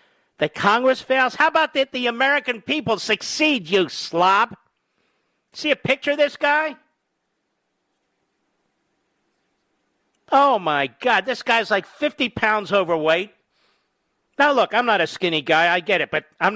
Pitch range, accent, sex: 155-245 Hz, American, male